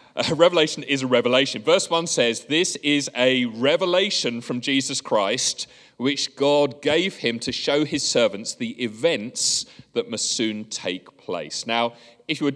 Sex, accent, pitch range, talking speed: male, British, 125-170 Hz, 160 wpm